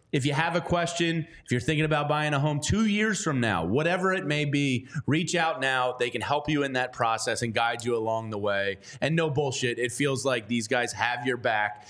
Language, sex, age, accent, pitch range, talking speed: English, male, 30-49, American, 120-150 Hz, 235 wpm